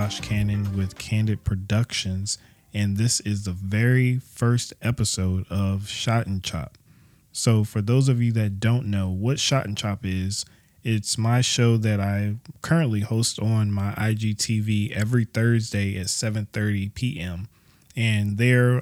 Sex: male